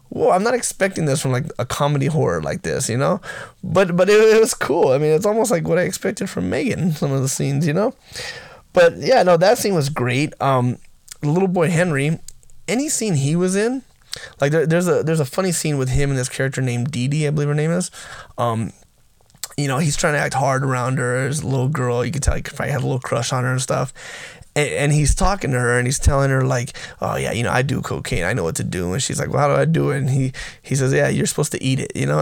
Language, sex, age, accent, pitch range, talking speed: English, male, 20-39, American, 130-165 Hz, 265 wpm